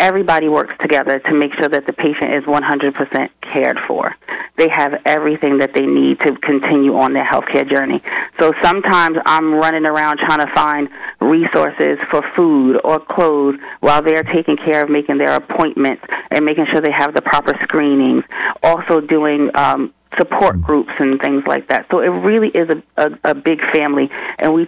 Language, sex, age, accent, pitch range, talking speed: English, female, 30-49, American, 145-160 Hz, 180 wpm